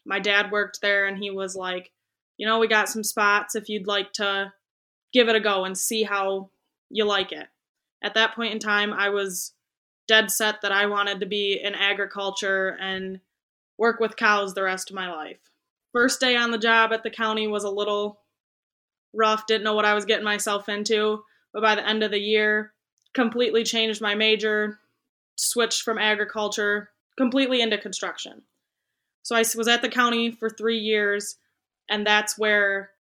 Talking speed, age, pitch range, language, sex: 185 wpm, 10-29, 200-220 Hz, English, female